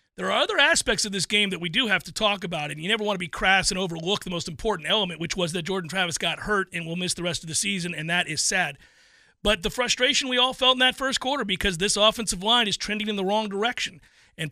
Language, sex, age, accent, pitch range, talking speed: English, male, 40-59, American, 185-225 Hz, 275 wpm